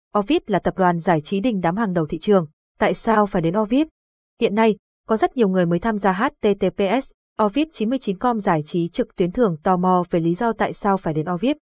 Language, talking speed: Vietnamese, 225 wpm